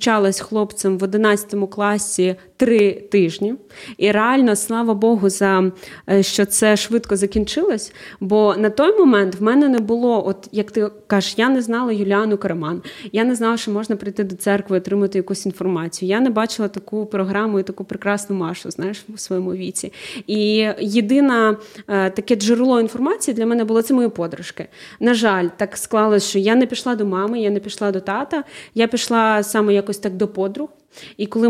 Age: 20-39